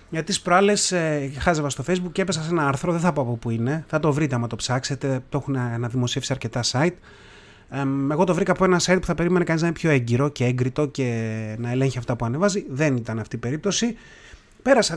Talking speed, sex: 225 wpm, male